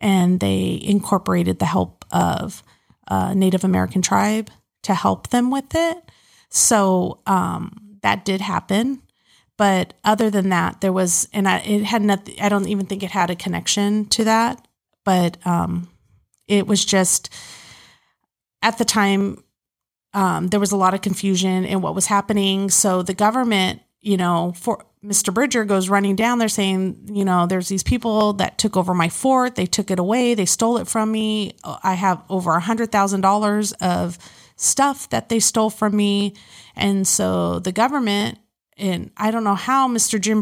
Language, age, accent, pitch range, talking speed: English, 30-49, American, 185-215 Hz, 170 wpm